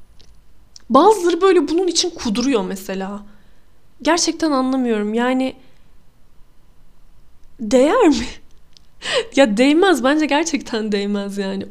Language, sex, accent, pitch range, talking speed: Turkish, female, native, 215-275 Hz, 85 wpm